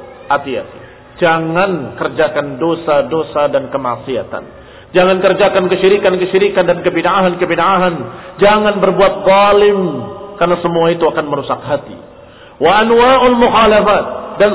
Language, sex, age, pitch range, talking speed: Indonesian, male, 50-69, 175-225 Hz, 85 wpm